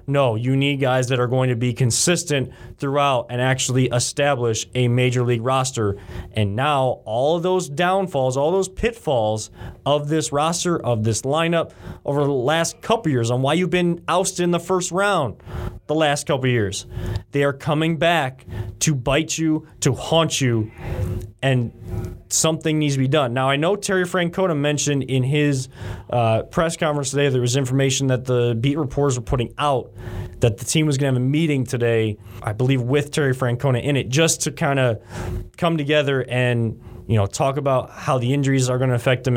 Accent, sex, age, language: American, male, 20-39, English